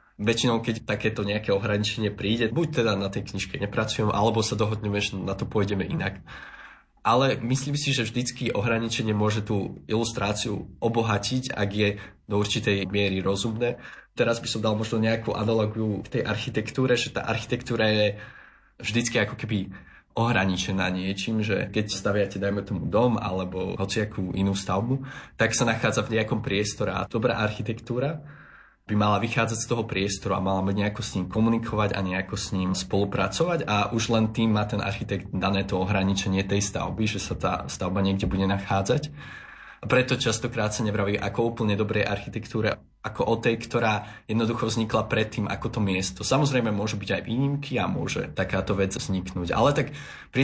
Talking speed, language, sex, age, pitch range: 170 wpm, Slovak, male, 20-39, 100-115 Hz